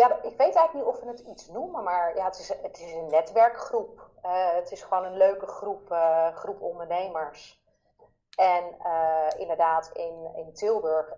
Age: 30-49